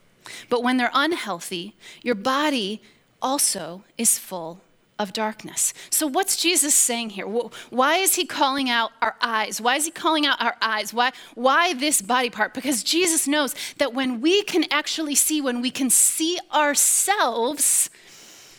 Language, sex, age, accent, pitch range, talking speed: English, female, 30-49, American, 230-305 Hz, 160 wpm